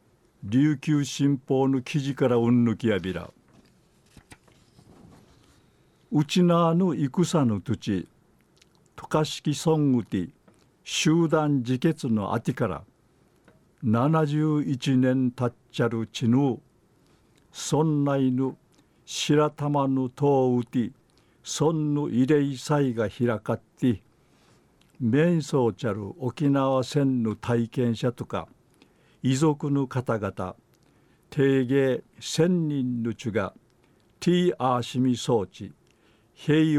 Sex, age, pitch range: male, 50-69, 115-145 Hz